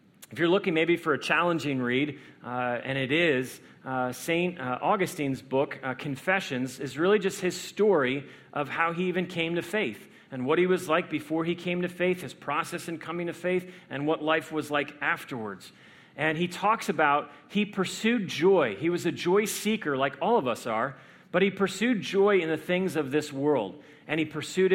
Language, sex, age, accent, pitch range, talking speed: English, male, 40-59, American, 145-190 Hz, 200 wpm